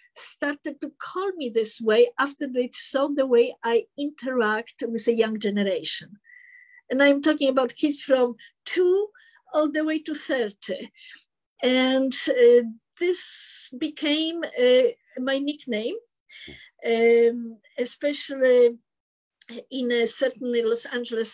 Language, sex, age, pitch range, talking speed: English, female, 50-69, 235-290 Hz, 120 wpm